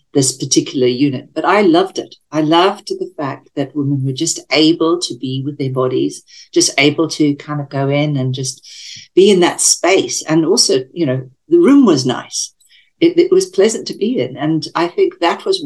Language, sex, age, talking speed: English, female, 60-79, 205 wpm